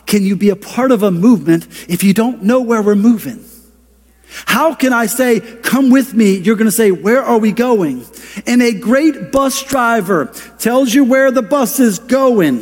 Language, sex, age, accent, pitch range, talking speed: English, male, 40-59, American, 220-250 Hz, 200 wpm